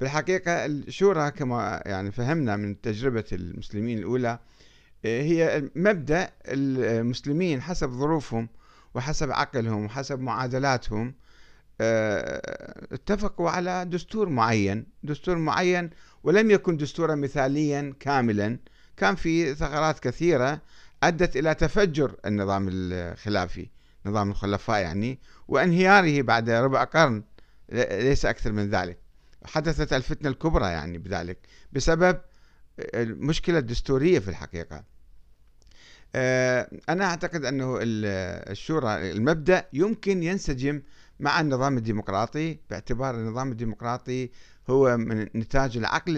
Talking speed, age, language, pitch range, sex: 100 wpm, 50-69, Arabic, 105-155 Hz, male